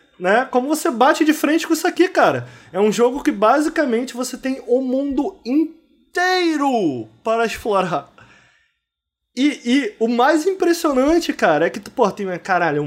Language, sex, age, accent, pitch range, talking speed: Portuguese, male, 20-39, Brazilian, 195-270 Hz, 155 wpm